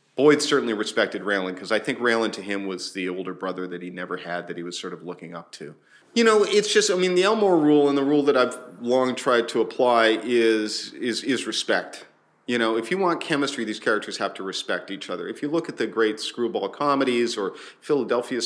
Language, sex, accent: English, male, American